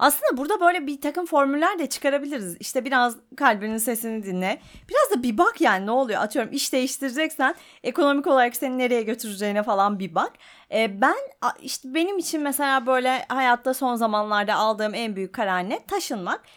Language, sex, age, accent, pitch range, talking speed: Turkish, female, 30-49, native, 240-320 Hz, 170 wpm